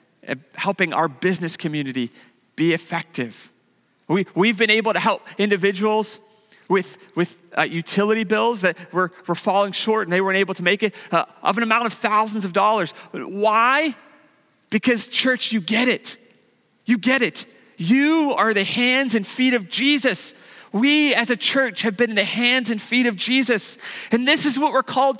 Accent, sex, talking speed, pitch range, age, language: American, male, 175 wpm, 175-235 Hz, 40-59, English